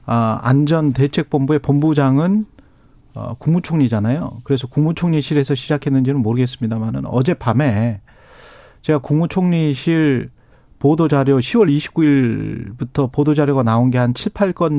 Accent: native